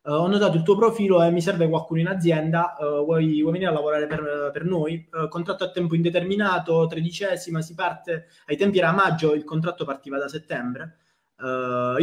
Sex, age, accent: male, 20-39, native